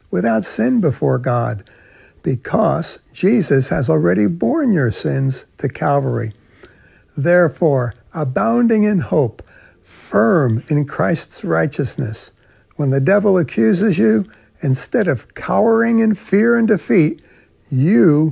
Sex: male